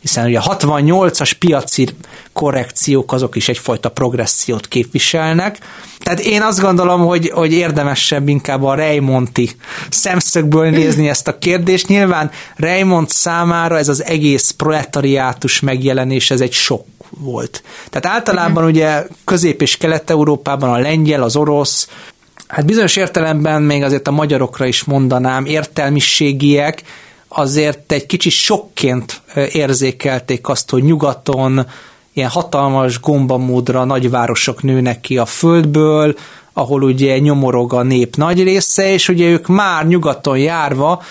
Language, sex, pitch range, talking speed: Hungarian, male, 130-170 Hz, 125 wpm